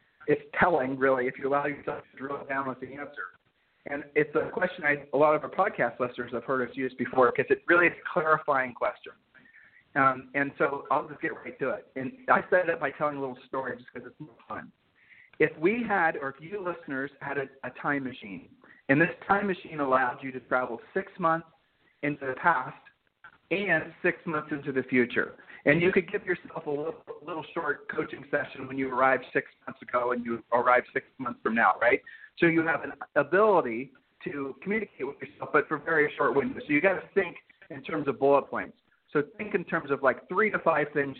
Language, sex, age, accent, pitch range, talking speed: English, male, 40-59, American, 130-165 Hz, 220 wpm